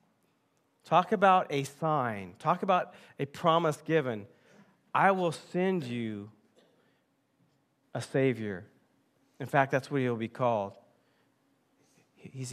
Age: 40-59